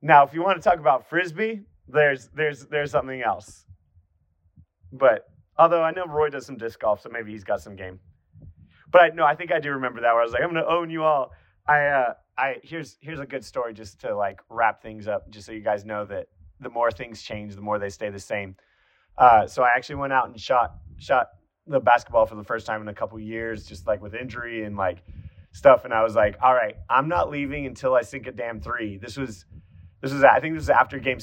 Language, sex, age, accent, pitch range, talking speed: English, male, 30-49, American, 105-145 Hz, 250 wpm